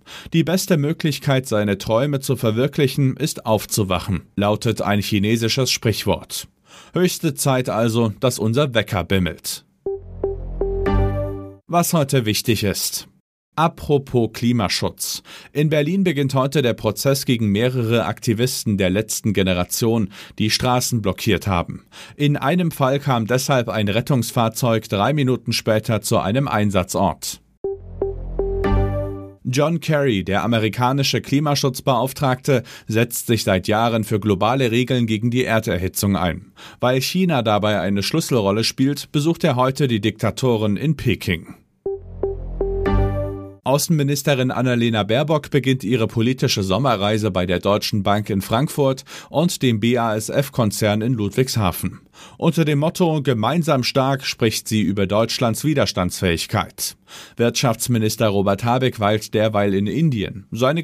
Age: 40-59